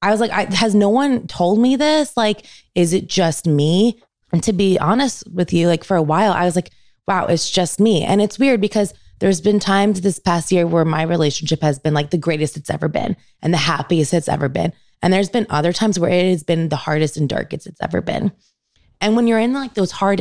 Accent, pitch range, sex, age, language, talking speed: American, 155-205 Hz, female, 20-39, English, 240 wpm